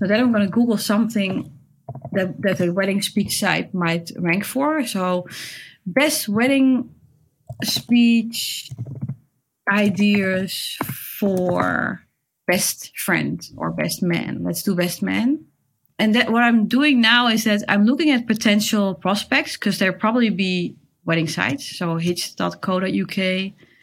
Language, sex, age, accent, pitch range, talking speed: English, female, 30-49, Dutch, 180-230 Hz, 130 wpm